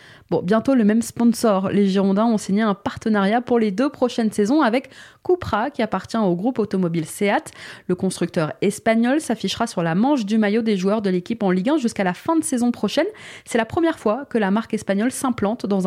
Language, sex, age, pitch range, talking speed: French, female, 20-39, 195-245 Hz, 210 wpm